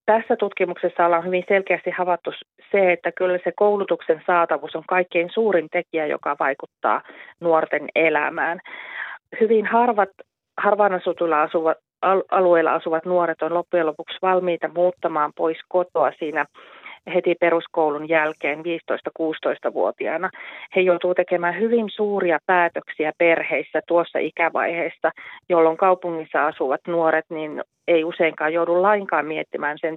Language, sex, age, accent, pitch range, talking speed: Finnish, female, 30-49, native, 165-190 Hz, 115 wpm